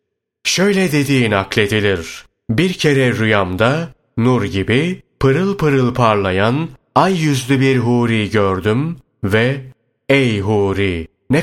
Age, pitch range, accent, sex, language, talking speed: 30-49, 105-130 Hz, native, male, Turkish, 105 wpm